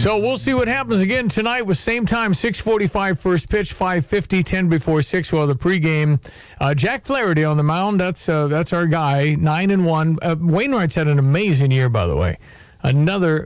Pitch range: 135-180 Hz